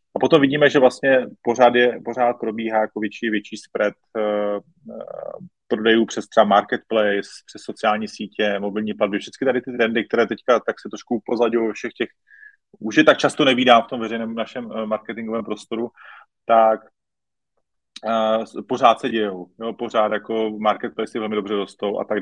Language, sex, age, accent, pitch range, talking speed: Czech, male, 30-49, native, 105-125 Hz, 165 wpm